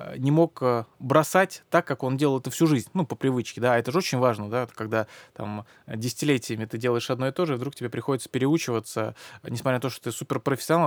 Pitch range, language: 125-155 Hz, Russian